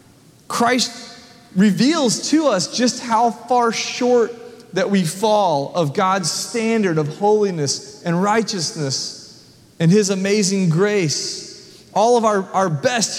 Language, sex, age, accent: English, male, 30-49, American